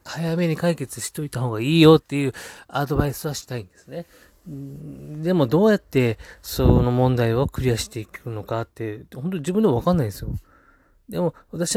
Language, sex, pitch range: Japanese, male, 110-150 Hz